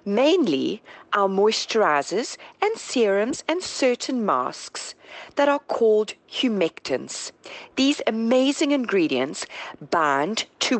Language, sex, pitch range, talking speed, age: English, female, 195-295 Hz, 95 wpm, 40-59